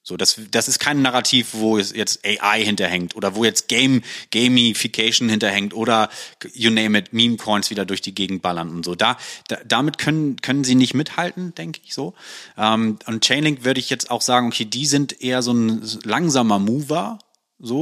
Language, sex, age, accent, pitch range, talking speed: German, male, 30-49, German, 110-130 Hz, 190 wpm